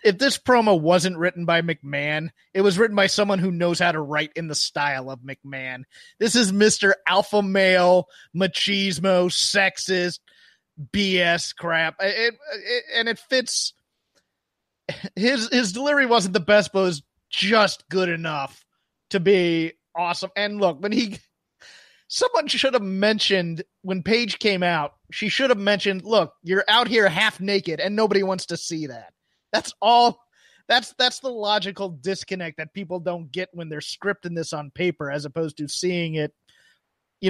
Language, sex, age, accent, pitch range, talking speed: English, male, 30-49, American, 170-210 Hz, 165 wpm